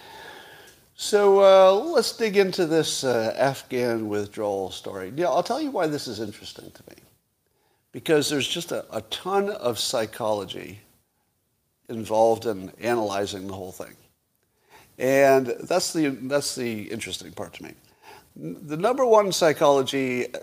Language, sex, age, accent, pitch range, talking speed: English, male, 50-69, American, 115-160 Hz, 140 wpm